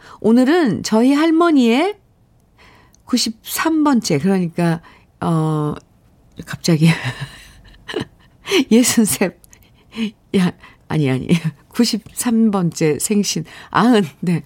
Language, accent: Korean, native